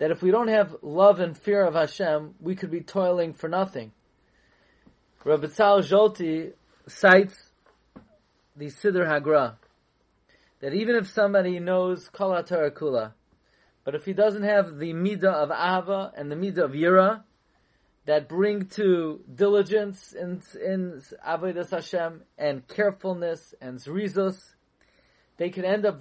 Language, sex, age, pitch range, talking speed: English, male, 30-49, 170-205 Hz, 135 wpm